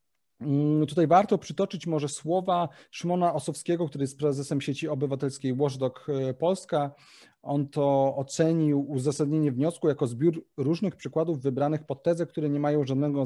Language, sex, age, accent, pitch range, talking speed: Polish, male, 30-49, native, 130-160 Hz, 135 wpm